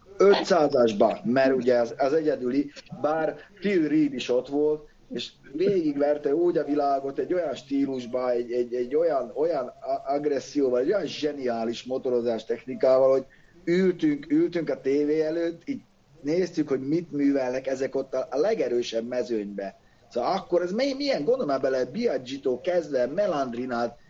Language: Hungarian